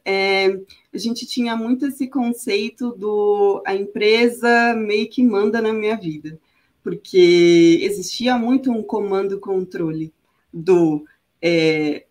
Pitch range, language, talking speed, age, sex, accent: 190-230 Hz, Portuguese, 115 wpm, 20-39, female, Brazilian